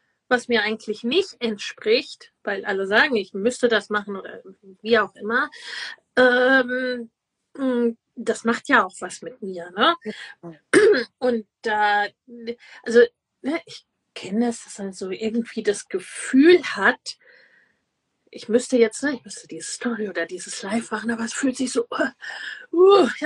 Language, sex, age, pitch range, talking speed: German, female, 30-49, 215-285 Hz, 150 wpm